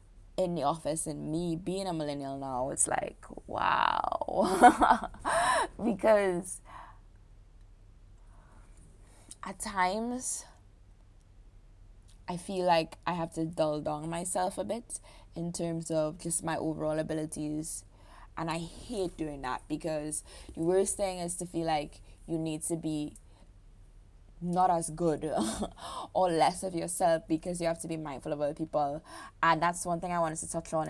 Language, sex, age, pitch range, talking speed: English, female, 20-39, 120-175 Hz, 145 wpm